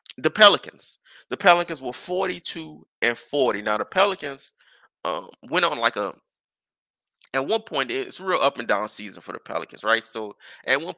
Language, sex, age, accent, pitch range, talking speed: English, male, 20-39, American, 115-150 Hz, 175 wpm